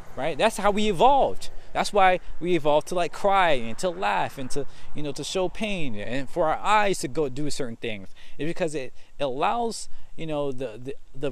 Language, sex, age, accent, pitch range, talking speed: English, male, 20-39, American, 120-170 Hz, 210 wpm